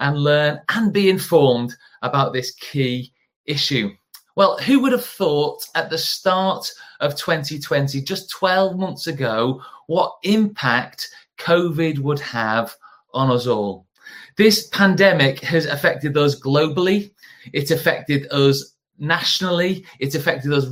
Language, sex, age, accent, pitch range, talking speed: English, male, 30-49, British, 140-180 Hz, 125 wpm